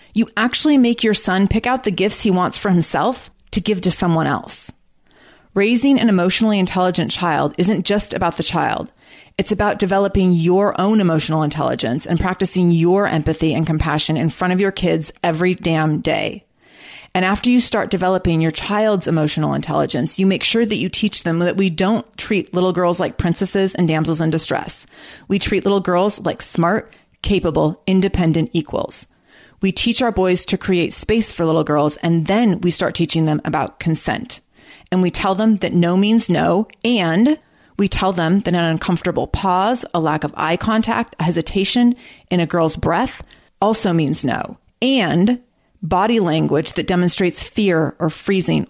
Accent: American